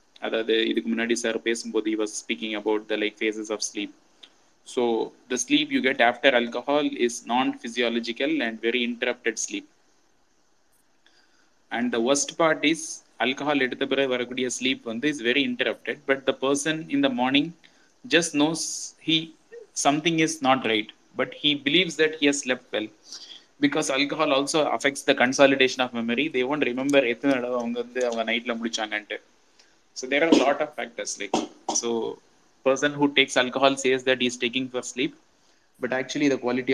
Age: 20-39